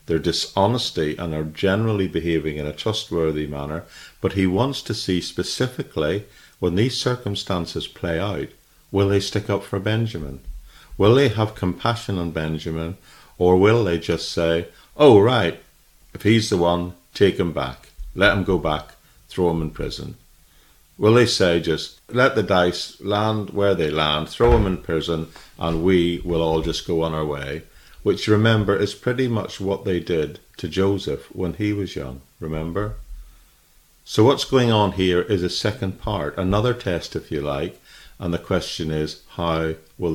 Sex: male